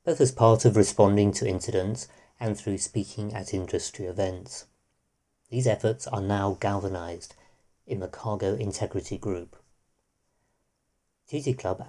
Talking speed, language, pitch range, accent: 125 wpm, English, 100-120 Hz, British